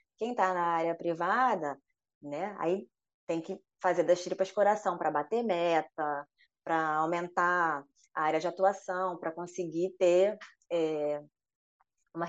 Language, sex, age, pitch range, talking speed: Portuguese, female, 20-39, 175-210 Hz, 130 wpm